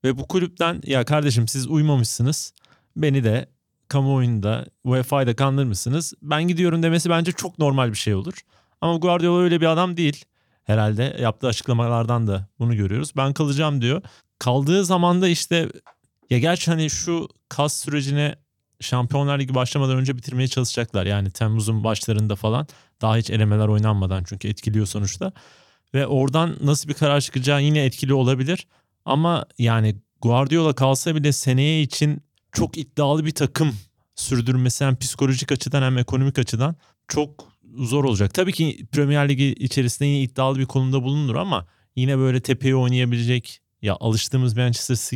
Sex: male